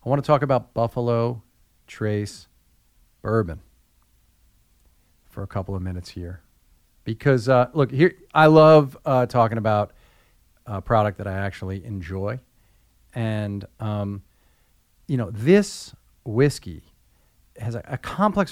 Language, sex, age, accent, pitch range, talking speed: English, male, 40-59, American, 100-130 Hz, 125 wpm